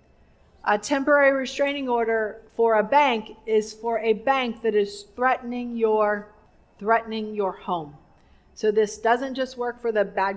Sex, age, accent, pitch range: female, 40-59, American, 190-245 Hz